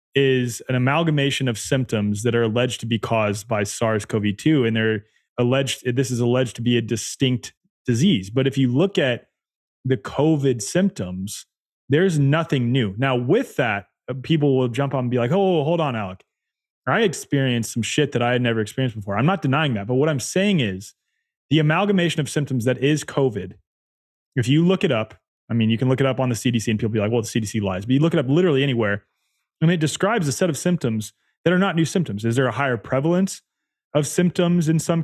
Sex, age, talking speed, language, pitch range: male, 20-39, 220 wpm, English, 115-155 Hz